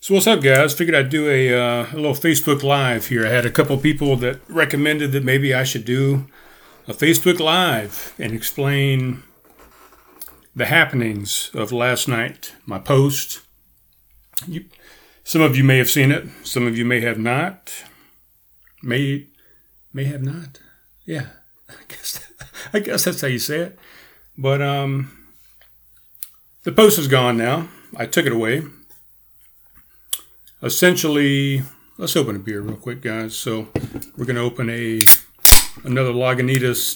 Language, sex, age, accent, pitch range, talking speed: English, male, 40-59, American, 120-150 Hz, 150 wpm